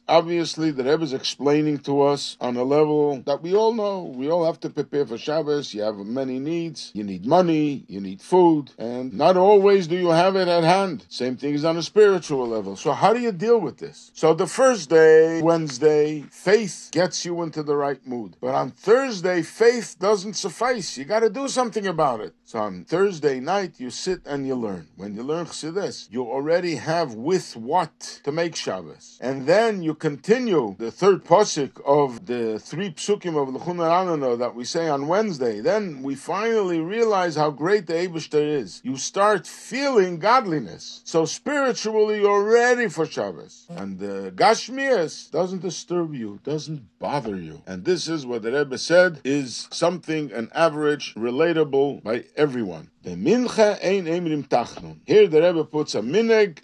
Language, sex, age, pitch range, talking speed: English, male, 50-69, 140-195 Hz, 180 wpm